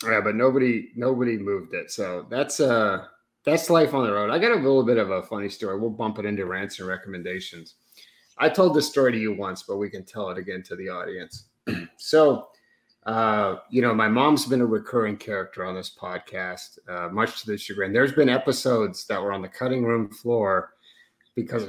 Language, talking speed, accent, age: English, 210 wpm, American, 30-49